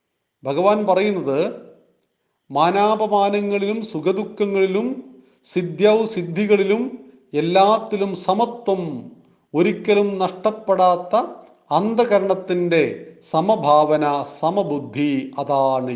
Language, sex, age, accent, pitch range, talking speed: Malayalam, male, 40-59, native, 135-190 Hz, 55 wpm